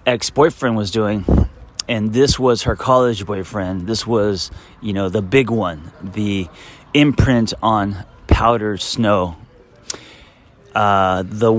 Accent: American